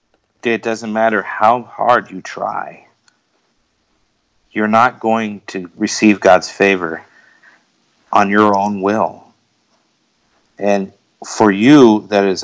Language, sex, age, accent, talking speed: English, male, 50-69, American, 110 wpm